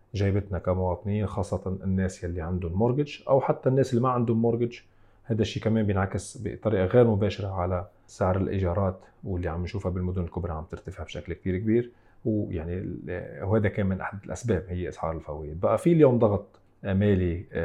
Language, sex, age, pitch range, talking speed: Arabic, male, 40-59, 90-105 Hz, 165 wpm